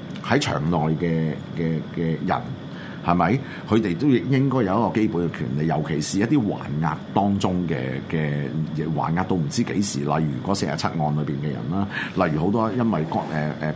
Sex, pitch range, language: male, 80-115 Hz, Chinese